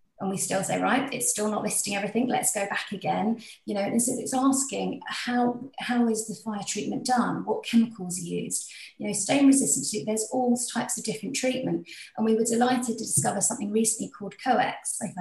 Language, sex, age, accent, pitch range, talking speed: English, female, 30-49, British, 195-230 Hz, 205 wpm